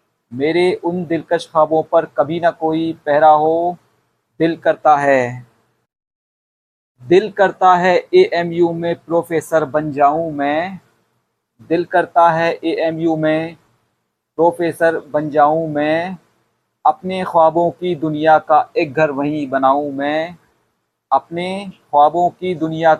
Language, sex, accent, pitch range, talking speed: Hindi, male, native, 145-170 Hz, 115 wpm